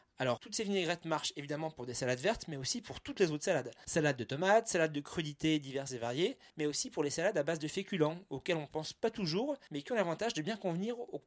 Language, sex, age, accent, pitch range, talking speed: French, male, 30-49, French, 135-185 Hz, 255 wpm